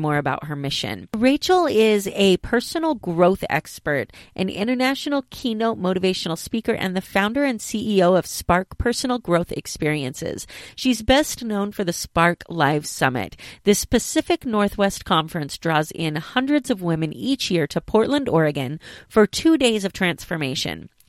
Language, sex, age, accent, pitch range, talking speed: English, female, 30-49, American, 170-245 Hz, 150 wpm